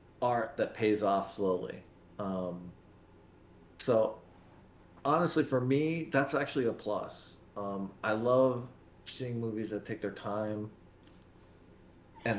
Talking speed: 110 wpm